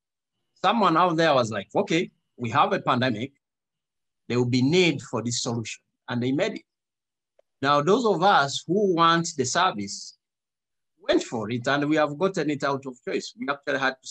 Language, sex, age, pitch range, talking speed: English, male, 50-69, 135-195 Hz, 185 wpm